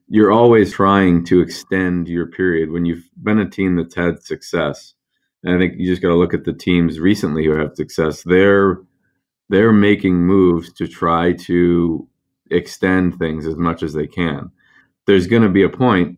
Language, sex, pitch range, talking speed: English, male, 85-95 Hz, 180 wpm